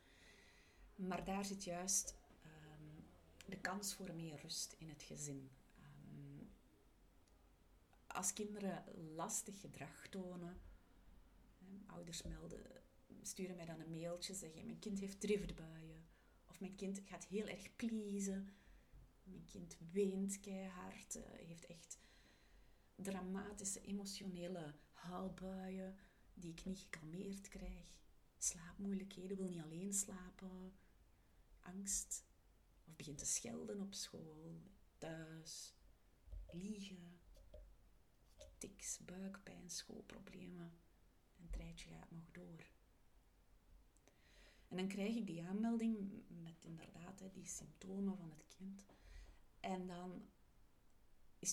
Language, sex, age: Dutch, female, 30-49